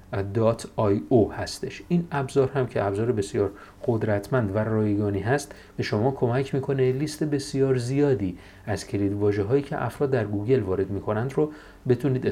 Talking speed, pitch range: 150 wpm, 100-135 Hz